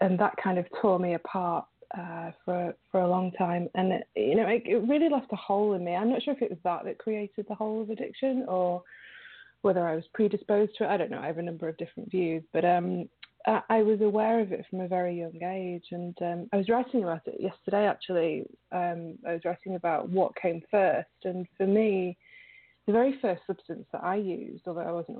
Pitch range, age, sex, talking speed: 175-220 Hz, 20-39, female, 230 wpm